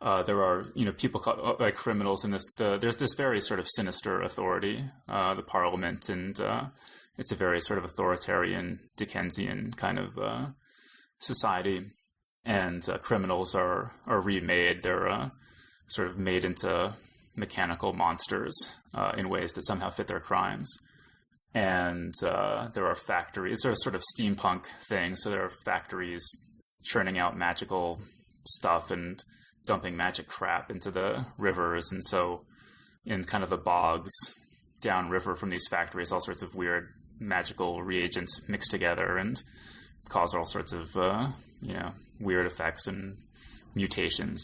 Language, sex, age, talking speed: English, male, 20-39, 155 wpm